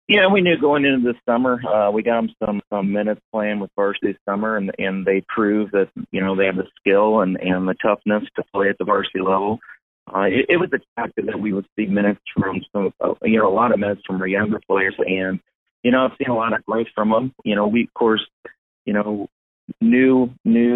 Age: 30-49